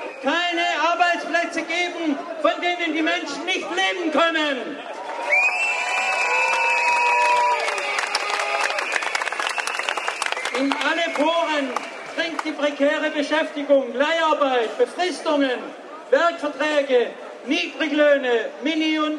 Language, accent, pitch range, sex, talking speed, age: German, German, 280-320 Hz, male, 70 wpm, 50-69